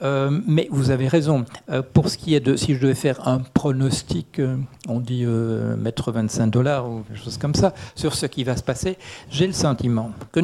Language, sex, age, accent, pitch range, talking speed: French, male, 60-79, French, 115-145 Hz, 225 wpm